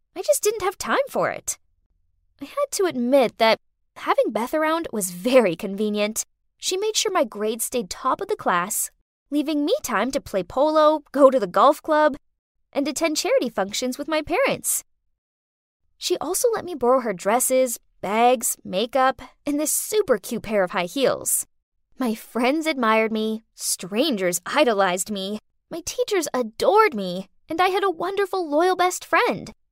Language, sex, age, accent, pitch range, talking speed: English, female, 10-29, American, 210-330 Hz, 165 wpm